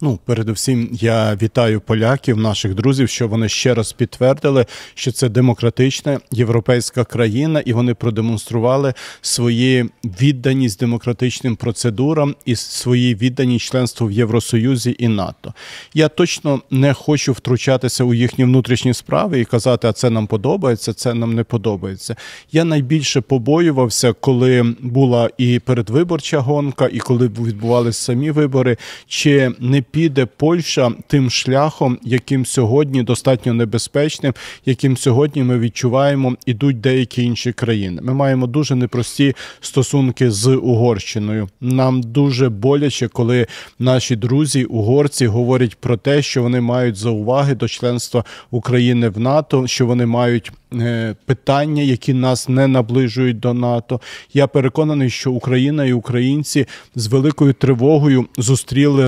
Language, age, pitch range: Ukrainian, 40-59, 120-135 Hz